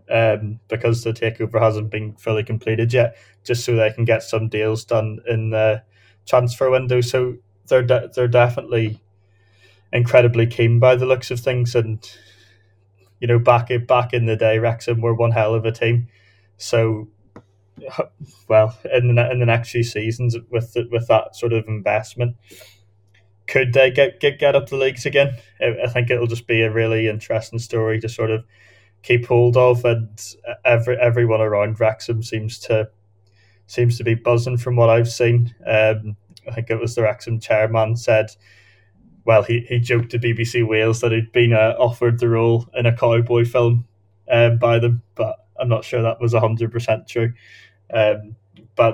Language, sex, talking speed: English, male, 175 wpm